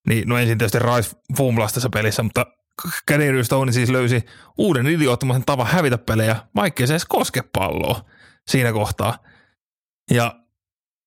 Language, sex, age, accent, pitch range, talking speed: Finnish, male, 30-49, native, 105-130 Hz, 130 wpm